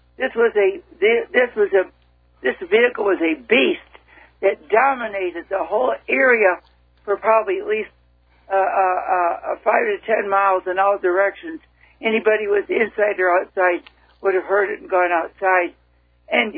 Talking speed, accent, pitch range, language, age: 160 wpm, American, 175-225 Hz, English, 60-79